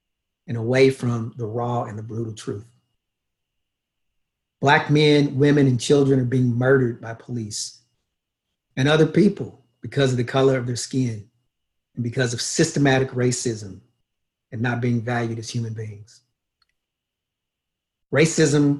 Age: 40-59